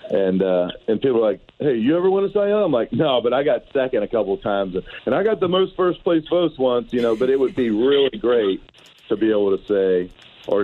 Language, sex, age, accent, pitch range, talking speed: English, male, 40-59, American, 95-120 Hz, 265 wpm